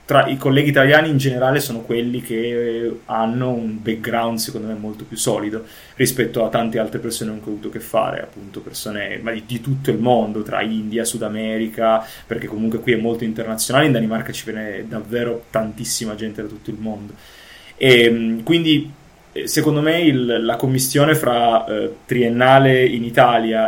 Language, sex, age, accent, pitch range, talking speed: Italian, male, 20-39, native, 115-145 Hz, 170 wpm